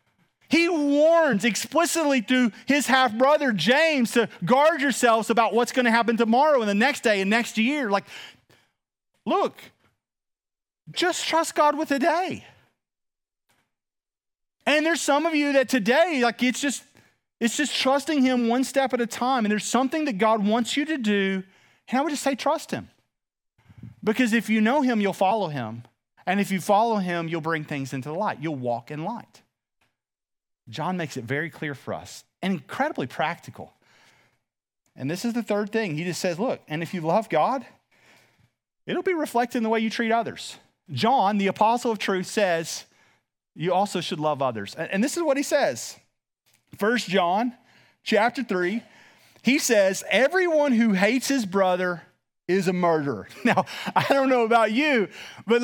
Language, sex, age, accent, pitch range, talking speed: English, male, 30-49, American, 190-275 Hz, 170 wpm